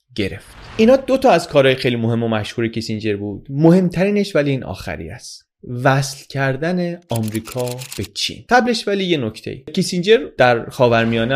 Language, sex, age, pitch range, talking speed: Persian, male, 30-49, 110-160 Hz, 150 wpm